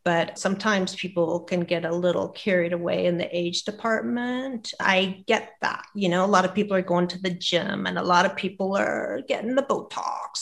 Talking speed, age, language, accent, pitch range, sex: 205 wpm, 40-59, English, American, 180-215 Hz, female